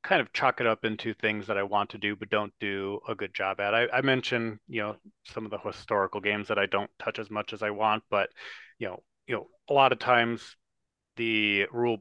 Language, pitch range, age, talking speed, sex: English, 100-115 Hz, 30-49, 245 wpm, male